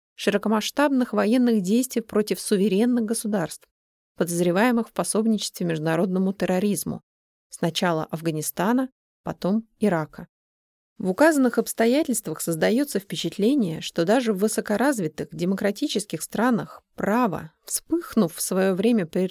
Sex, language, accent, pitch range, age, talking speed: female, Russian, native, 175-235 Hz, 30-49, 100 wpm